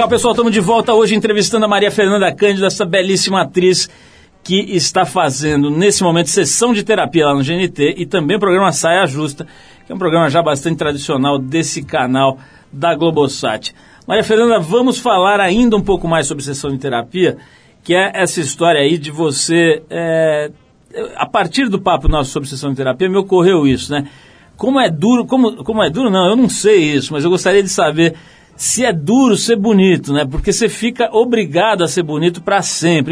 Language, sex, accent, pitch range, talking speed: Portuguese, male, Brazilian, 155-205 Hz, 195 wpm